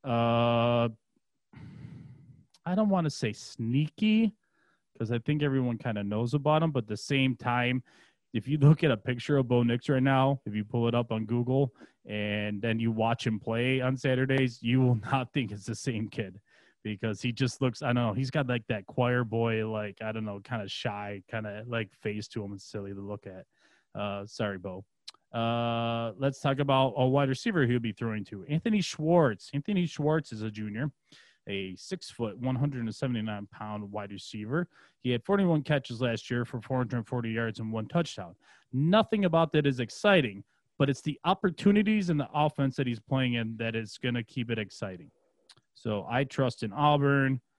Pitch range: 110-140 Hz